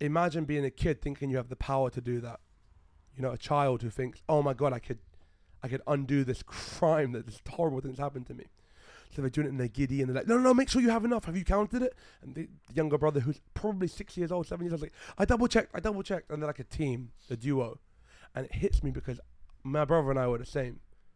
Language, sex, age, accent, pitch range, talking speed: English, male, 20-39, British, 95-140 Hz, 275 wpm